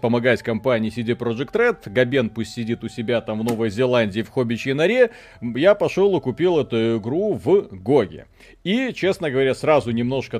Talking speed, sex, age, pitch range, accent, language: 175 wpm, male, 30-49, 120-160 Hz, native, Russian